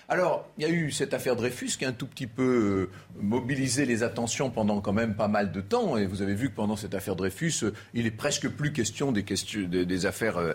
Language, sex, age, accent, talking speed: French, male, 40-59, French, 235 wpm